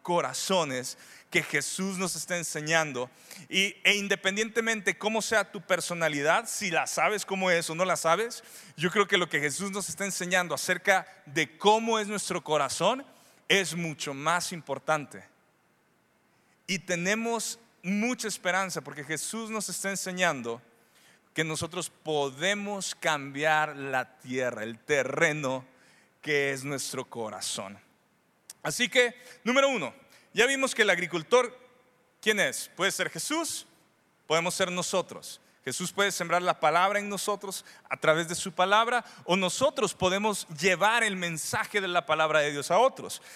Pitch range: 160-215 Hz